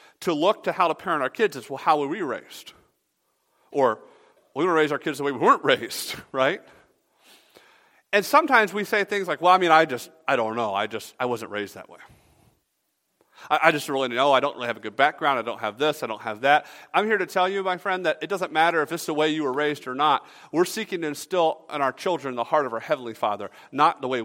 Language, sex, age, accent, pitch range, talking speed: English, male, 40-59, American, 150-210 Hz, 255 wpm